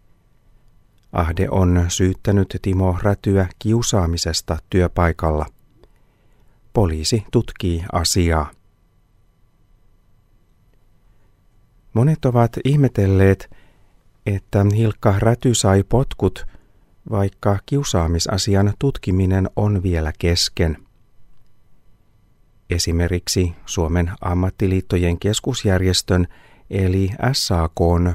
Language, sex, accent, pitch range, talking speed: Finnish, male, native, 90-115 Hz, 65 wpm